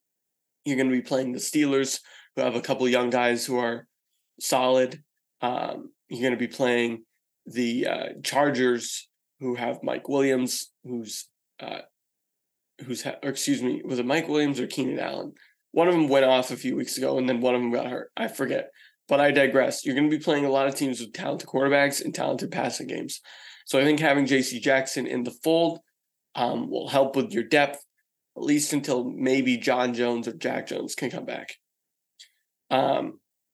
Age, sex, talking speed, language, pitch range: 20-39, male, 195 wpm, English, 125-150 Hz